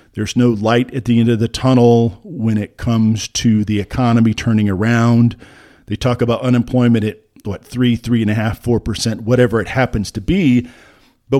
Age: 40-59